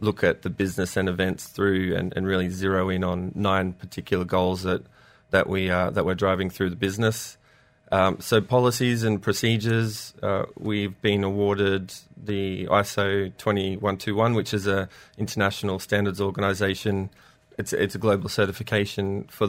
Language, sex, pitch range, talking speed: English, male, 95-105 Hz, 155 wpm